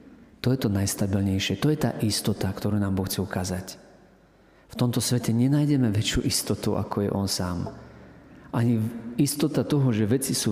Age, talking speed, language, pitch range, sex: 40-59, 165 wpm, Slovak, 100-130 Hz, male